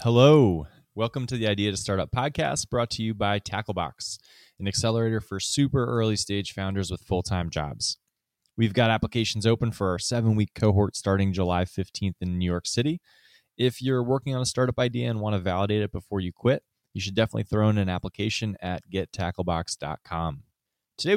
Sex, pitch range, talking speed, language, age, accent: male, 90-115 Hz, 185 wpm, English, 20-39, American